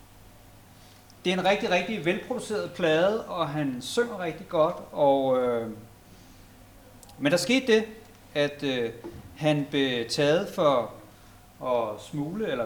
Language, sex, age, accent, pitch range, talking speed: Danish, male, 30-49, native, 110-165 Hz, 130 wpm